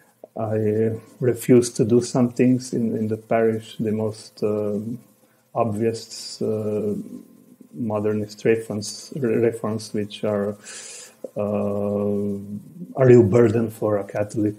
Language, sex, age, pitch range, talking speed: English, male, 30-49, 105-115 Hz, 105 wpm